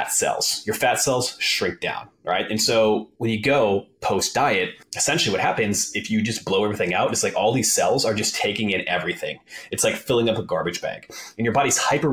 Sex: male